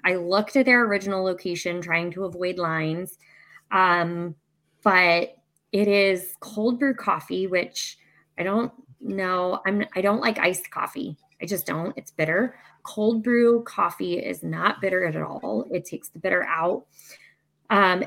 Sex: female